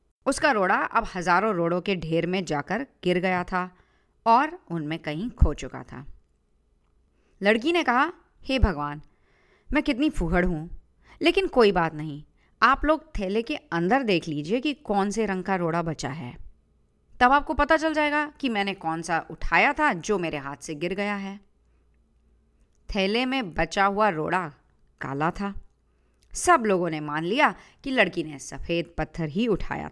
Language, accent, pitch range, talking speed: Hindi, native, 155-220 Hz, 170 wpm